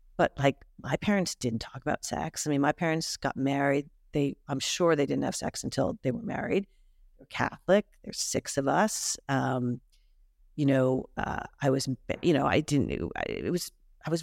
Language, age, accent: English, 40-59, American